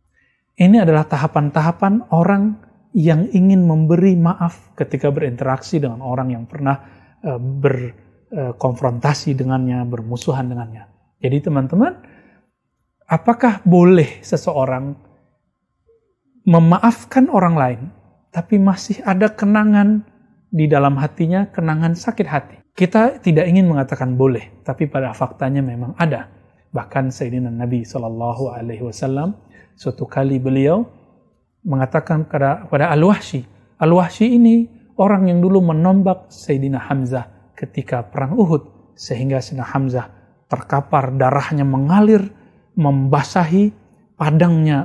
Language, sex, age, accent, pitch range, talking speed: Indonesian, male, 30-49, native, 130-180 Hz, 105 wpm